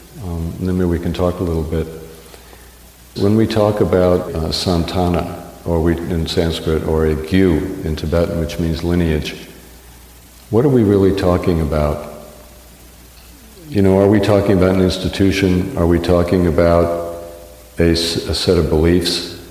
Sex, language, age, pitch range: male, English, 60-79, 80-95 Hz